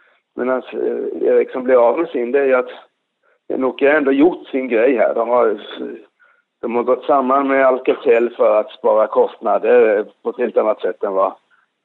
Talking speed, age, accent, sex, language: 185 wpm, 50-69, native, male, Swedish